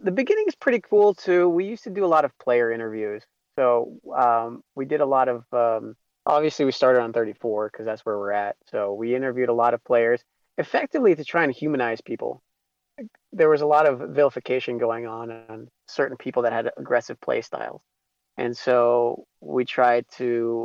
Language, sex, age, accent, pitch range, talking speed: English, male, 30-49, American, 115-145 Hz, 195 wpm